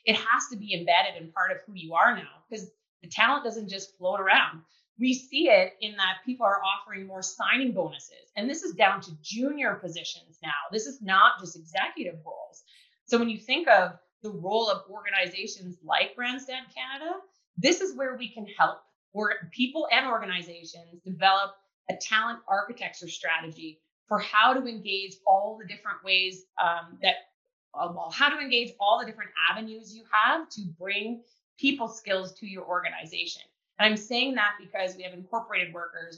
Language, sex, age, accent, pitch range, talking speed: English, female, 30-49, American, 180-235 Hz, 175 wpm